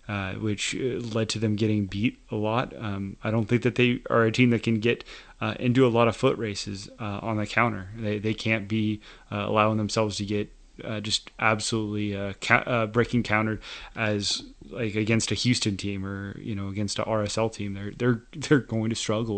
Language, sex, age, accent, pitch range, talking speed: English, male, 20-39, American, 105-120 Hz, 210 wpm